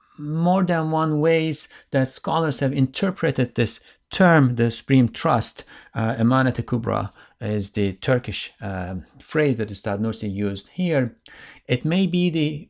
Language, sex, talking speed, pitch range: English, male, 135 wpm, 100-135 Hz